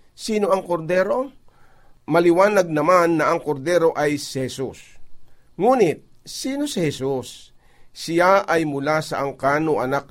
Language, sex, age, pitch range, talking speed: Filipino, male, 50-69, 135-170 Hz, 125 wpm